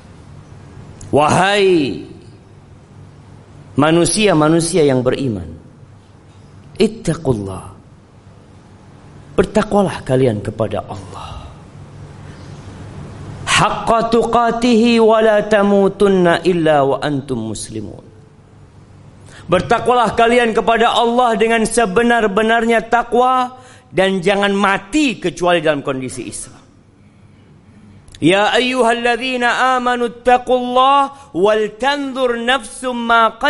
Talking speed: 60 wpm